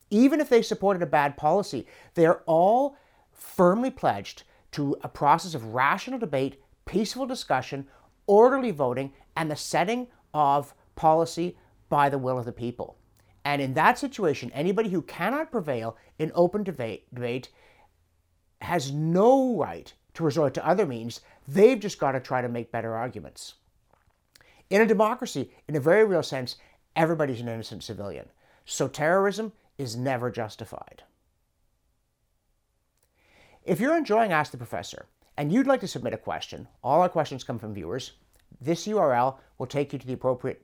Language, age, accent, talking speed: English, 50-69, American, 155 wpm